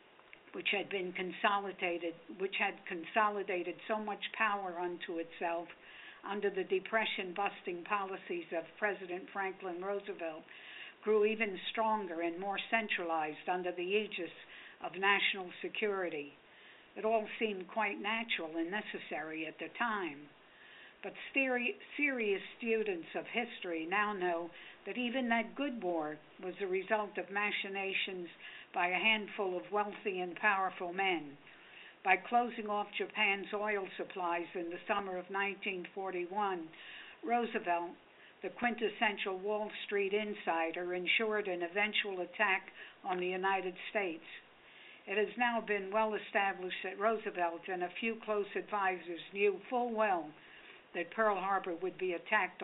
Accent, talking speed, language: American, 130 wpm, English